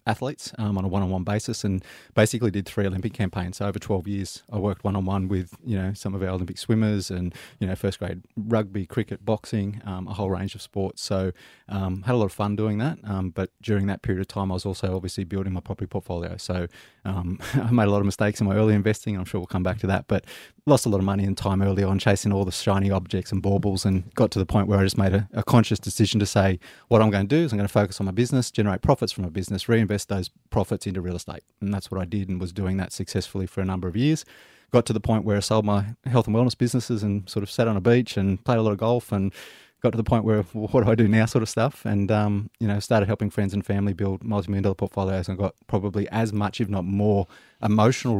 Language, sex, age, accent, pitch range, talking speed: English, male, 30-49, Australian, 95-110 Hz, 270 wpm